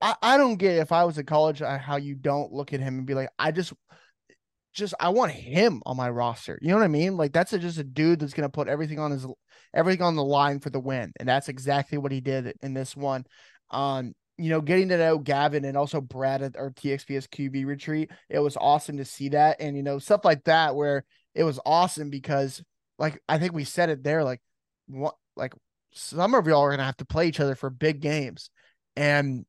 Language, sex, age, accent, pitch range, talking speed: English, male, 20-39, American, 135-155 Hz, 240 wpm